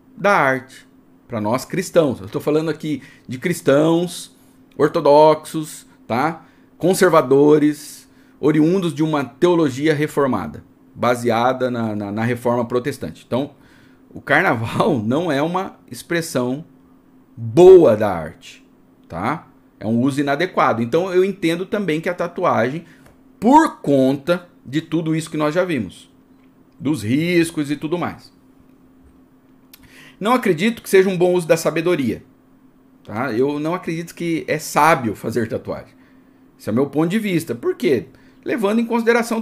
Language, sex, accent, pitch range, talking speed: Portuguese, male, Brazilian, 140-175 Hz, 135 wpm